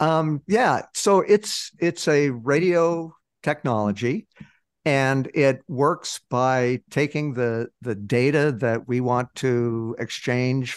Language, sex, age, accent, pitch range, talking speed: English, male, 60-79, American, 110-130 Hz, 115 wpm